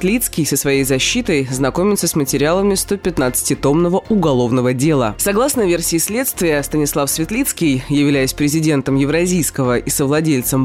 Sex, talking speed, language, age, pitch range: female, 115 wpm, Russian, 20-39, 140-195 Hz